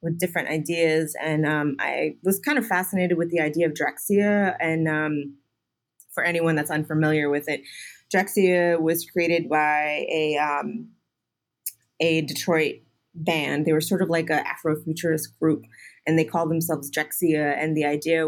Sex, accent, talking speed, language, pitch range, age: female, American, 160 wpm, English, 150-170 Hz, 30-49